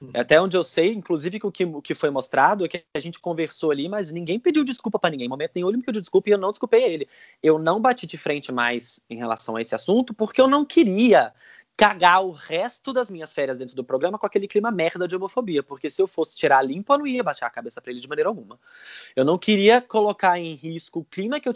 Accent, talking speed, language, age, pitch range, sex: Brazilian, 260 wpm, Portuguese, 20-39, 145-210 Hz, male